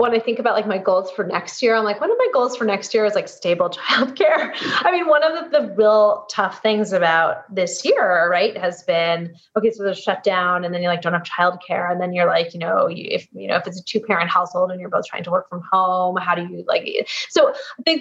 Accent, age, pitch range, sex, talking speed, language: American, 20-39, 180-245 Hz, female, 265 wpm, English